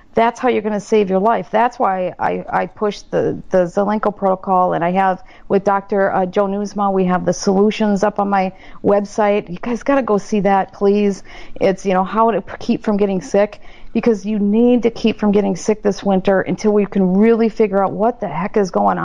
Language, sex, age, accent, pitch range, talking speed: English, female, 50-69, American, 200-260 Hz, 215 wpm